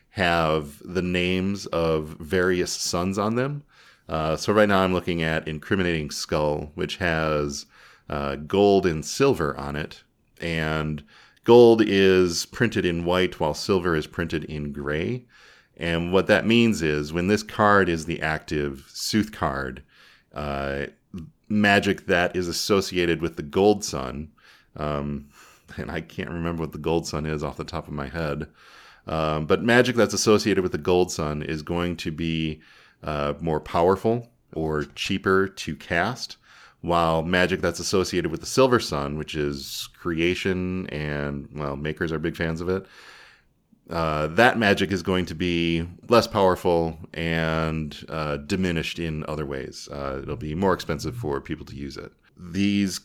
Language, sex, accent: English, male, American